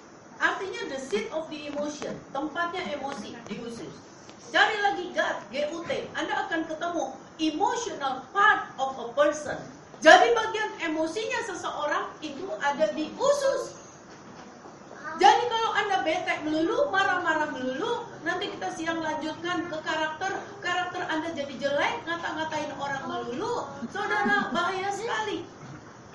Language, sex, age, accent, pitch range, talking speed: Indonesian, female, 40-59, native, 285-390 Hz, 120 wpm